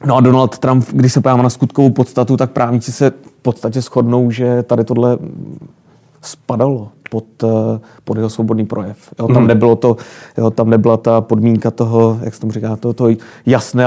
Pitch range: 115-125 Hz